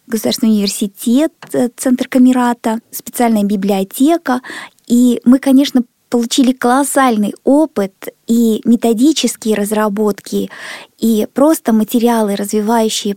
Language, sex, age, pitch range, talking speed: Russian, female, 20-39, 215-255 Hz, 85 wpm